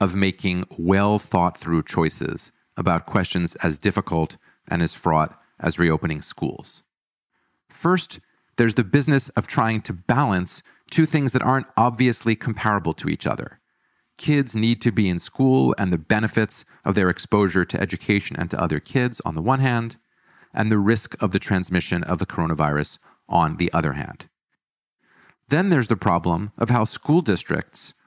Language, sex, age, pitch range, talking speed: English, male, 30-49, 90-120 Hz, 165 wpm